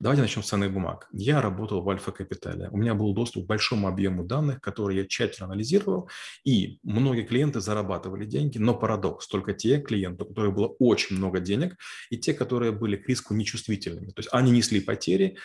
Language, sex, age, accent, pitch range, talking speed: Russian, male, 30-49, native, 100-120 Hz, 190 wpm